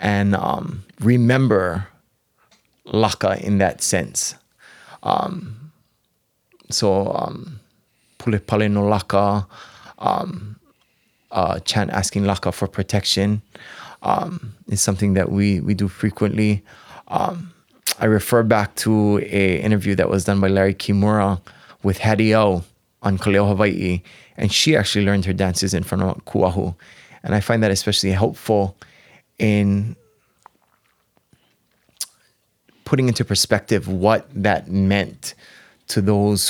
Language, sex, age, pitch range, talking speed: English, male, 20-39, 95-105 Hz, 120 wpm